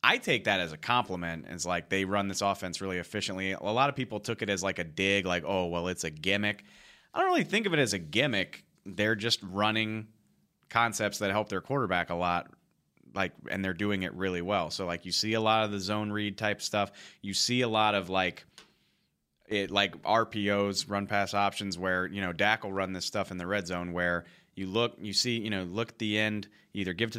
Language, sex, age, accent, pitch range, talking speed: English, male, 30-49, American, 95-105 Hz, 235 wpm